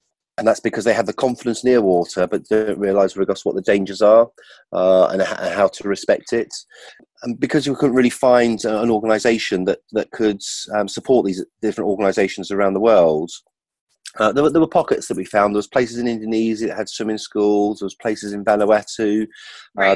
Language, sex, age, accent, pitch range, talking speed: English, male, 30-49, British, 105-125 Hz, 200 wpm